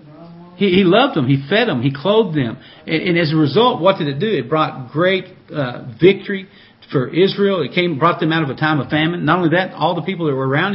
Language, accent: English, American